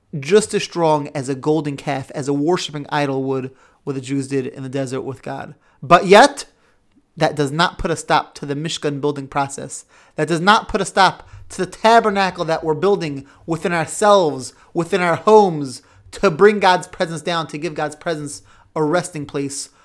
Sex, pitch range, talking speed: male, 145-195 Hz, 190 wpm